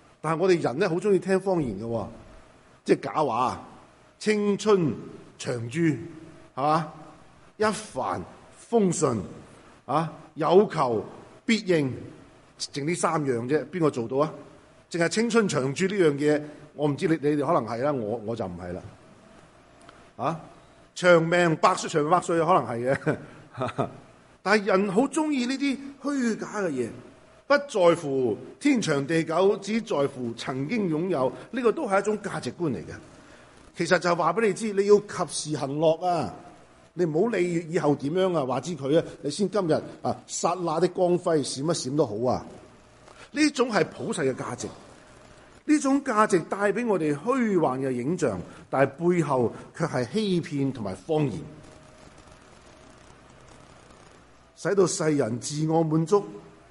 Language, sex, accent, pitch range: English, male, Chinese, 140-195 Hz